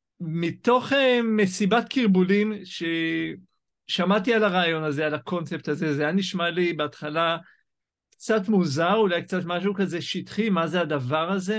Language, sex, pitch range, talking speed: Hebrew, male, 155-200 Hz, 135 wpm